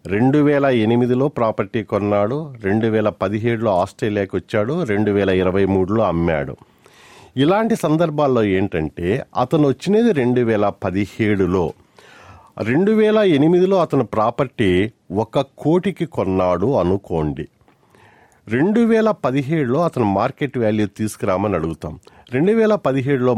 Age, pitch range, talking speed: 50-69, 95-140 Hz, 100 wpm